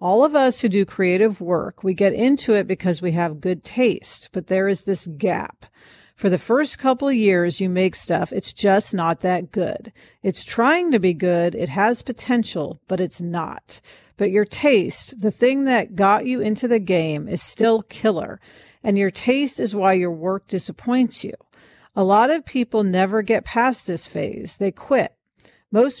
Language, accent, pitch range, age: English, American, 180-235 Hz, 50-69